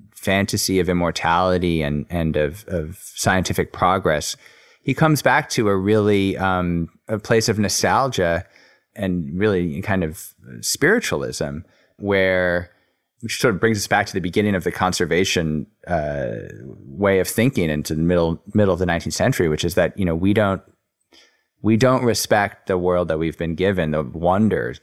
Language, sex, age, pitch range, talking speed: English, male, 30-49, 85-105 Hz, 165 wpm